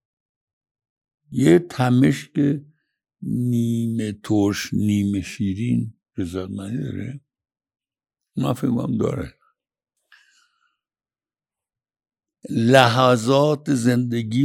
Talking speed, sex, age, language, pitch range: 50 wpm, male, 60-79, Persian, 100-145 Hz